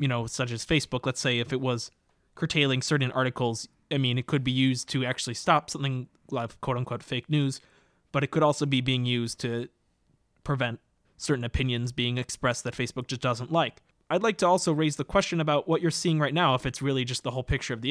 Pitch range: 125-150 Hz